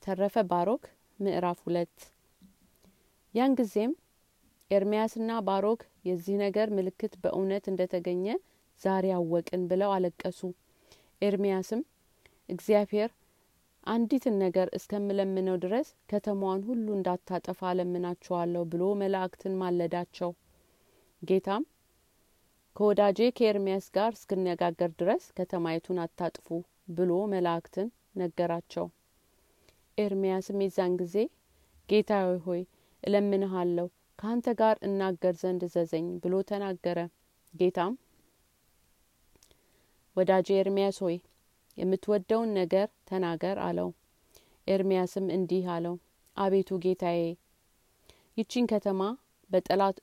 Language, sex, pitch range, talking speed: Amharic, female, 180-205 Hz, 85 wpm